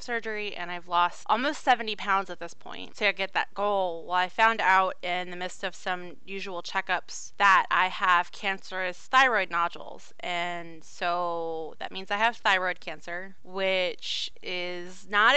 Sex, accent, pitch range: female, American, 180-215 Hz